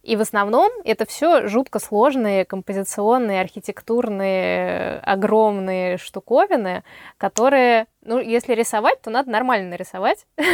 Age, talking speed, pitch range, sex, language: 20-39, 110 wpm, 185-225 Hz, female, Russian